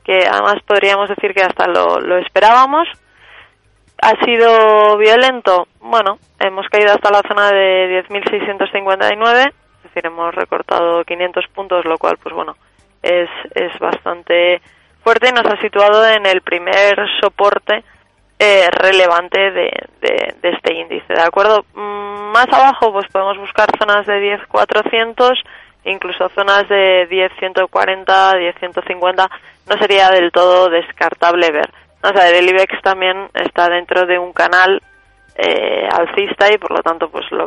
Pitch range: 180-215 Hz